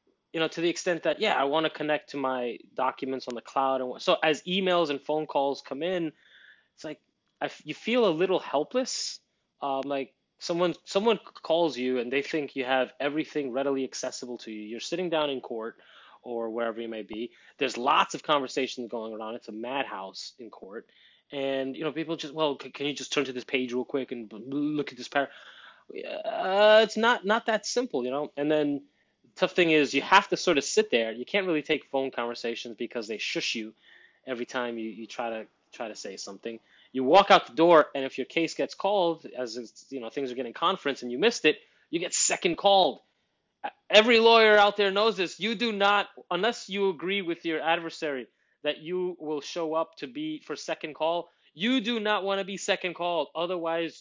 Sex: male